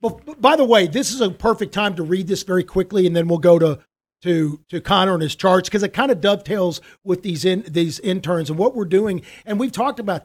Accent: American